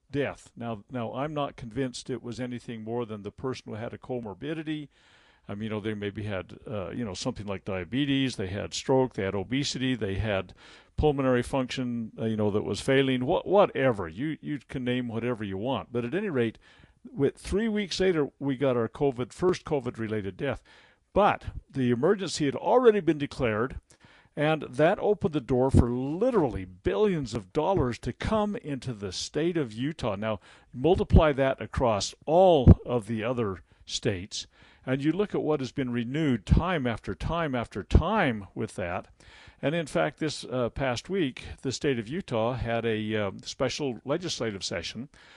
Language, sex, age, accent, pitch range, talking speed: English, male, 50-69, American, 110-145 Hz, 180 wpm